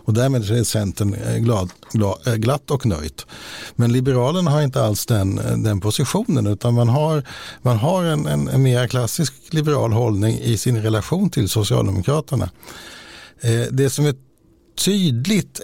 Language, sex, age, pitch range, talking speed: Swedish, male, 60-79, 110-140 Hz, 135 wpm